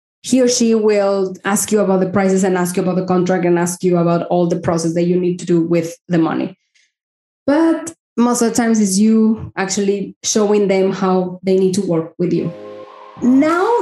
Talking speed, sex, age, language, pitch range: 210 wpm, female, 20-39, English, 190-245 Hz